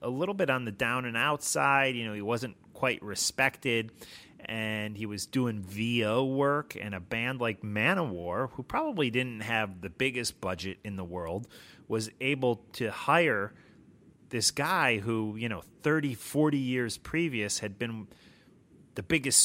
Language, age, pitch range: English, 30-49, 105-135 Hz